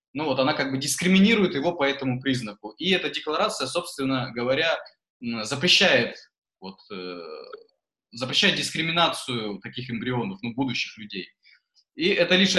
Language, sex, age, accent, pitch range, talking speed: Russian, male, 20-39, native, 120-165 Hz, 130 wpm